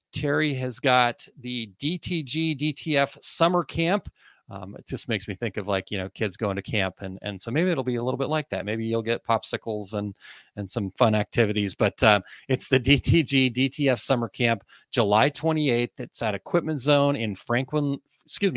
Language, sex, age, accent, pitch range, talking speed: English, male, 30-49, American, 110-140 Hz, 190 wpm